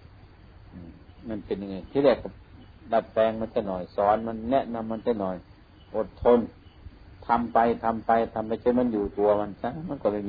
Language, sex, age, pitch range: Thai, male, 60-79, 95-120 Hz